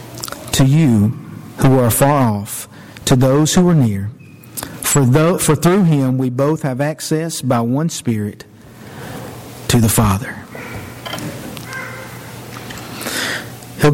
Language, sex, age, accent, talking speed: English, male, 50-69, American, 110 wpm